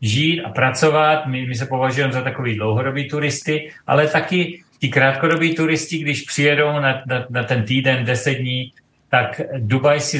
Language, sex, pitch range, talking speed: Czech, male, 120-135 Hz, 165 wpm